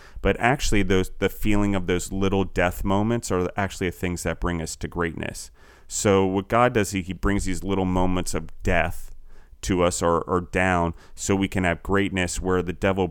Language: English